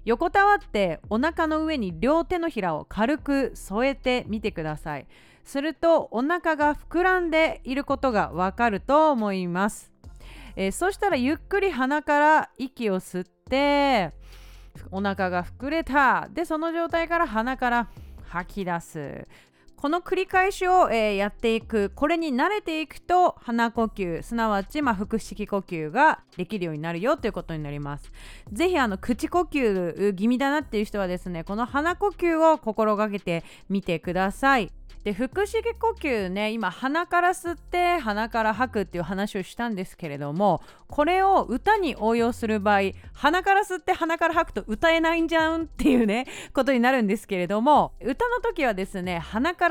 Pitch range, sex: 200-325 Hz, female